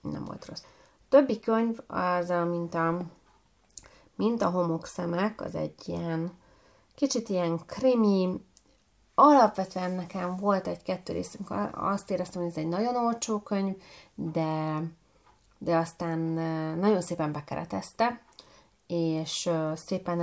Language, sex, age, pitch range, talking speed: Hungarian, female, 30-49, 165-205 Hz, 115 wpm